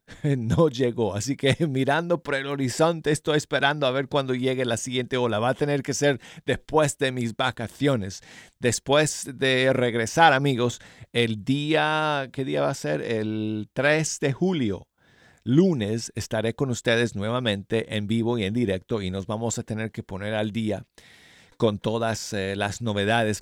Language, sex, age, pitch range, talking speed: Spanish, male, 40-59, 110-140 Hz, 165 wpm